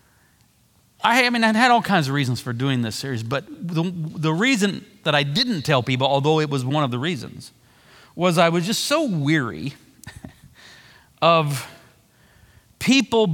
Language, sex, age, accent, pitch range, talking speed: English, male, 40-59, American, 130-185 Hz, 160 wpm